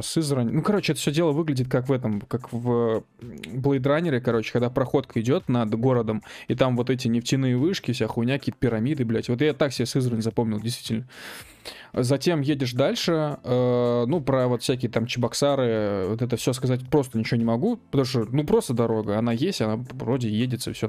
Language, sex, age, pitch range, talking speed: Russian, male, 20-39, 115-135 Hz, 185 wpm